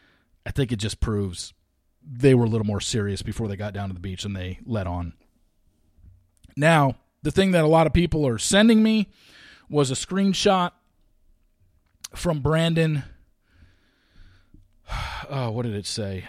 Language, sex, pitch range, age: English, male, 95-155 Hz, 40-59